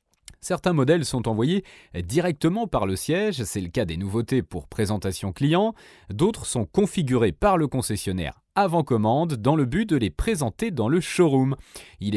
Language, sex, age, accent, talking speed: French, male, 30-49, French, 165 wpm